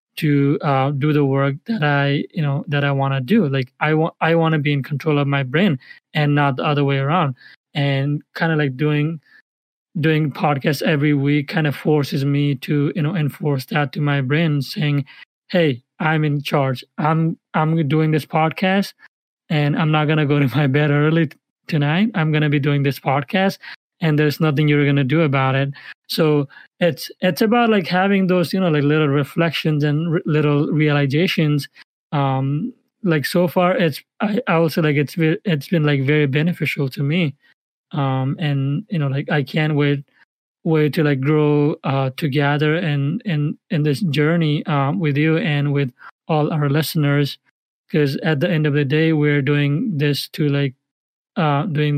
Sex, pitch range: male, 145-160 Hz